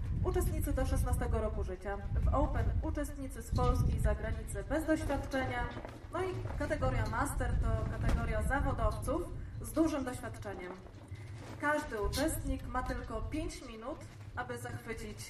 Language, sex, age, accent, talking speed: Polish, female, 20-39, native, 125 wpm